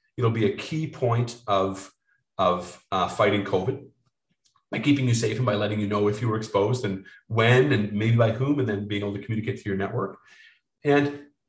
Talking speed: 205 wpm